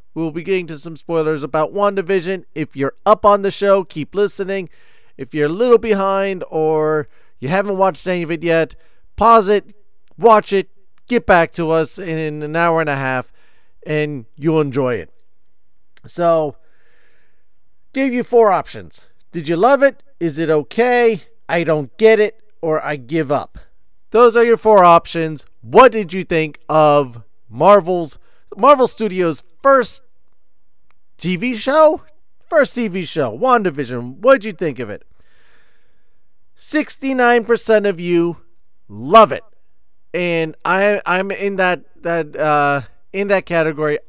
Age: 40-59